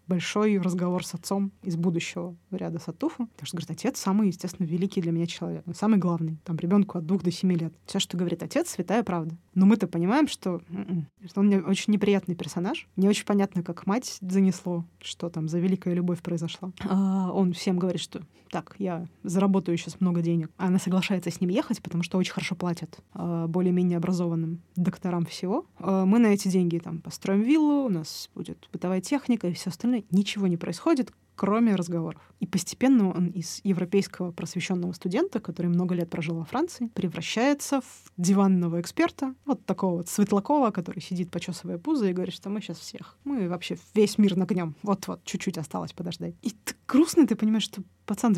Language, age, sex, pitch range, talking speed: Russian, 20-39, female, 175-205 Hz, 185 wpm